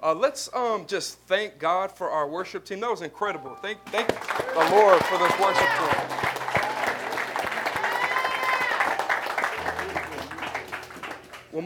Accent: American